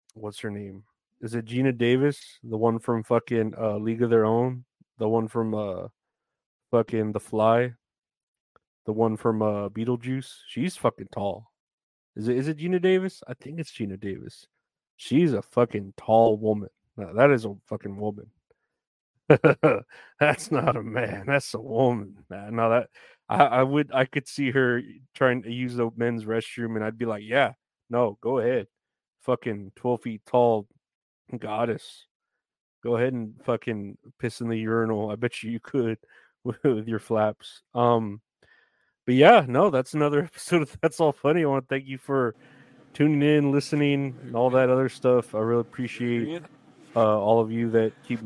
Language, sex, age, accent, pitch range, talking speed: English, male, 30-49, American, 110-130 Hz, 175 wpm